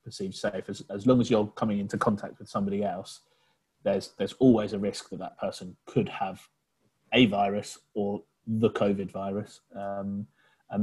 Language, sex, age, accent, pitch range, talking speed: English, male, 30-49, British, 100-110 Hz, 170 wpm